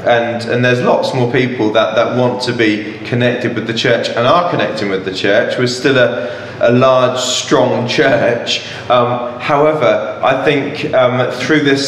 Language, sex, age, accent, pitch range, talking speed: English, male, 30-49, British, 115-140 Hz, 175 wpm